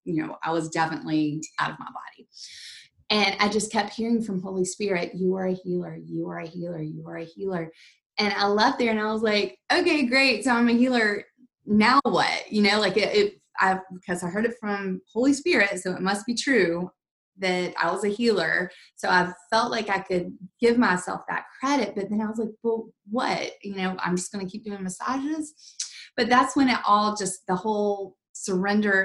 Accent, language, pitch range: American, English, 175-215 Hz